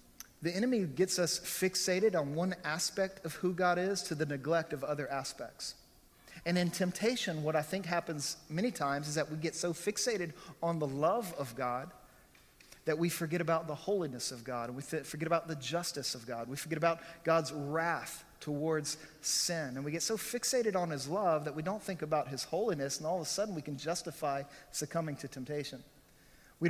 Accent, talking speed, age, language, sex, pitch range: American, 195 wpm, 40-59, English, male, 140-170 Hz